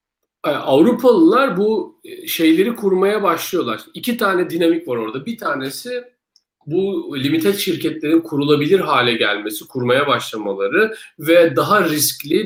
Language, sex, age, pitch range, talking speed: Turkish, male, 50-69, 140-225 Hz, 110 wpm